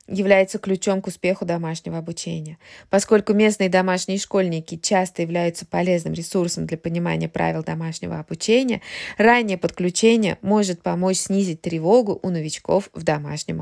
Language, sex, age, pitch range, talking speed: Russian, female, 20-39, 170-210 Hz, 130 wpm